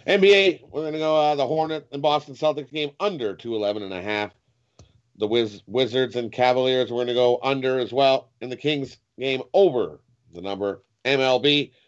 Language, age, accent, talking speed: English, 40-59, American, 185 wpm